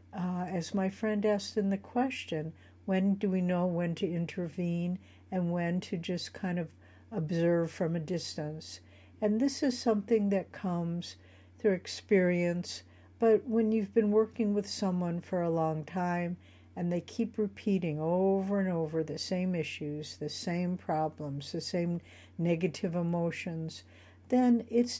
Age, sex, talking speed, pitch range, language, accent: 60-79, female, 150 wpm, 160-210 Hz, English, American